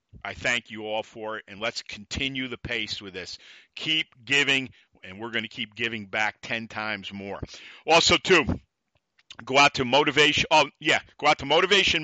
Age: 50-69